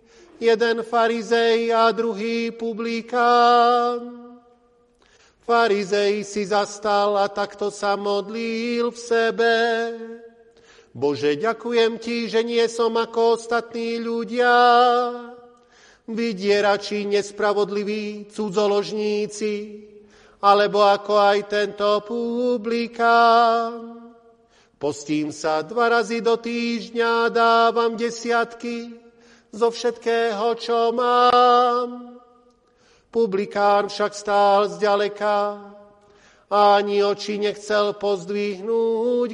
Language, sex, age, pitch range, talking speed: Slovak, male, 40-59, 210-235 Hz, 80 wpm